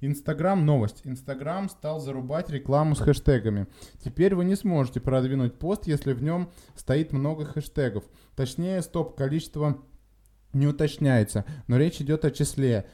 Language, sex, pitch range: Russian, male, 125-150 Hz